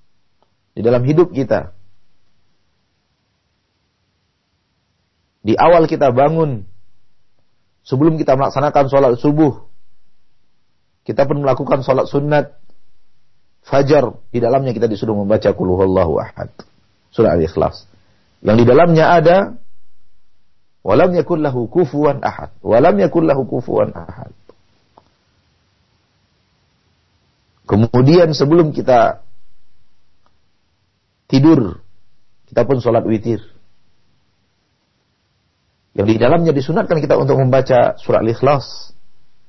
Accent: Indonesian